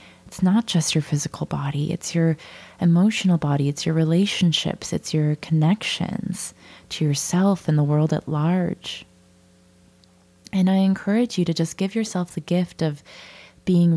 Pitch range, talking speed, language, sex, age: 145-180 Hz, 150 wpm, English, female, 20-39